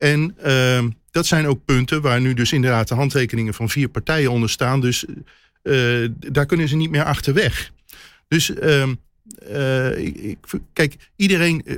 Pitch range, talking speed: 115-145 Hz, 155 wpm